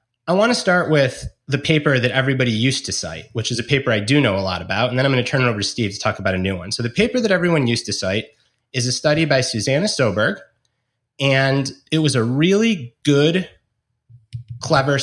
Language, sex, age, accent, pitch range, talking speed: English, male, 30-49, American, 120-155 Hz, 235 wpm